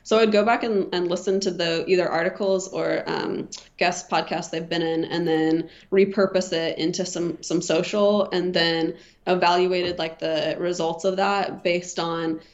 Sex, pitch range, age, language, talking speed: female, 170-195 Hz, 20-39, English, 170 wpm